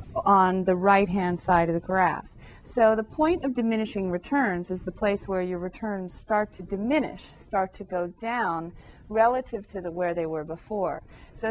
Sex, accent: female, American